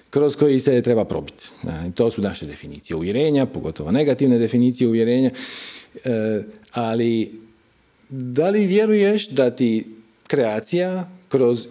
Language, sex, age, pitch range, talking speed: Croatian, male, 40-59, 115-165 Hz, 125 wpm